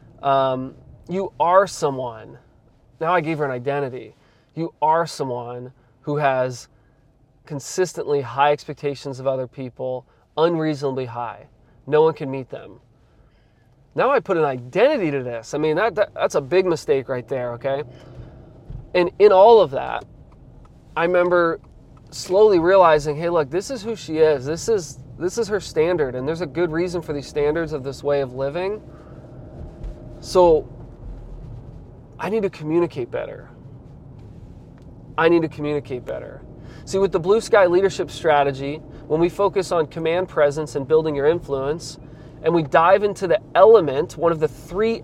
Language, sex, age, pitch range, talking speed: English, male, 20-39, 135-170 Hz, 160 wpm